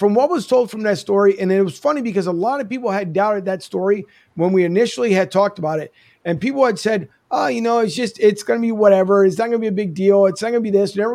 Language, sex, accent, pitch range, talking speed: English, male, American, 185-225 Hz, 305 wpm